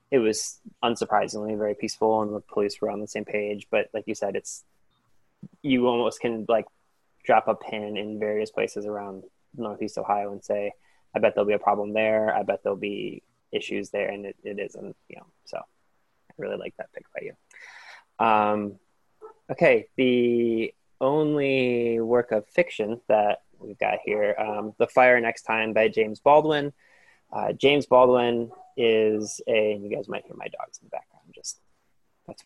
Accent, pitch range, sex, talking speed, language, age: American, 105-120 Hz, male, 175 wpm, English, 20-39